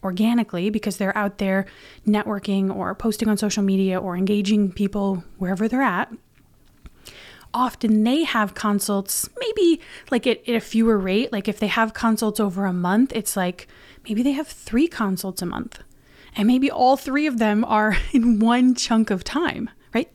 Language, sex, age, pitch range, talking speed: English, female, 20-39, 200-250 Hz, 175 wpm